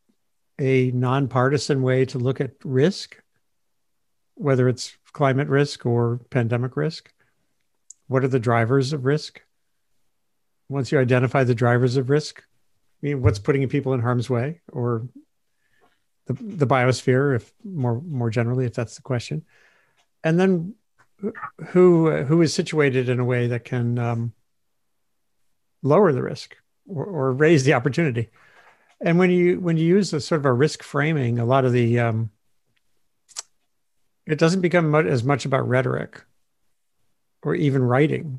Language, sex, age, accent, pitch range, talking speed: English, male, 50-69, American, 125-155 Hz, 145 wpm